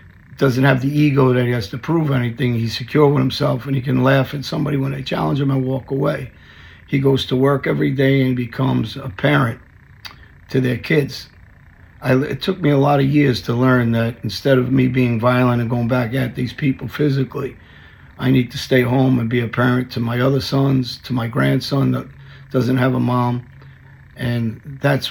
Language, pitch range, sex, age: English, 120-135 Hz, male, 50-69